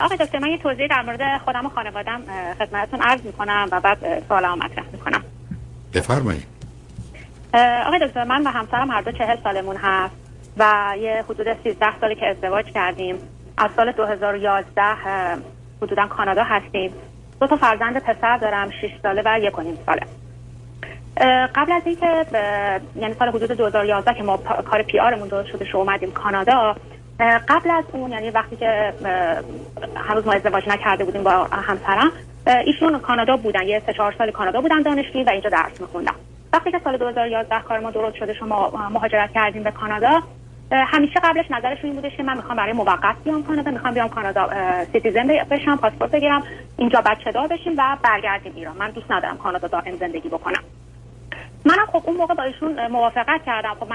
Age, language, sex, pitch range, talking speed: 30-49, Persian, female, 200-260 Hz, 165 wpm